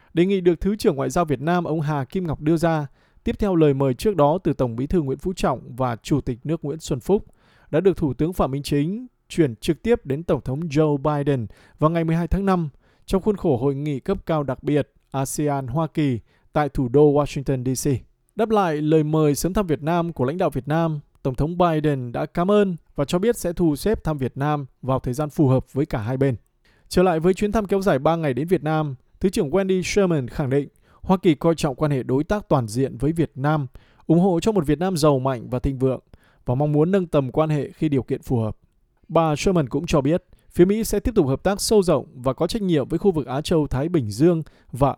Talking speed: 250 wpm